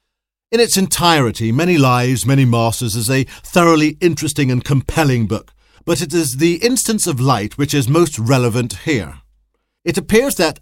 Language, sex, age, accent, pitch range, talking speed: English, male, 50-69, British, 125-160 Hz, 165 wpm